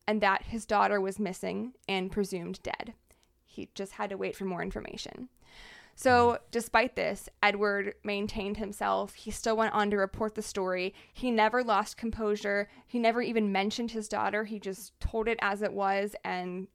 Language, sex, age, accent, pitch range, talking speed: English, female, 20-39, American, 200-235 Hz, 175 wpm